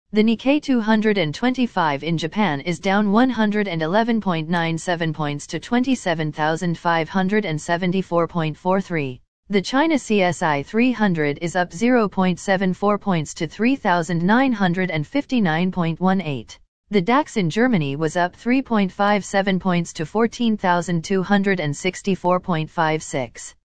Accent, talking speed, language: American, 80 wpm, English